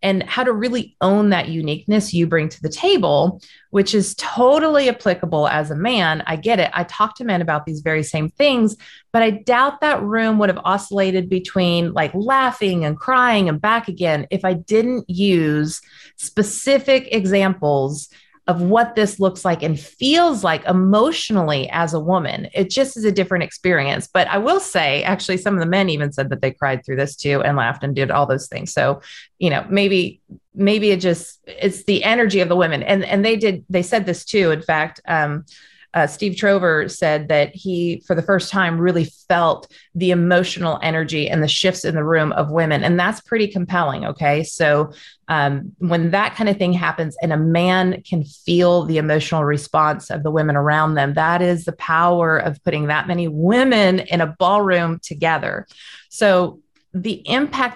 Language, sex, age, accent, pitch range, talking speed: English, female, 30-49, American, 155-200 Hz, 190 wpm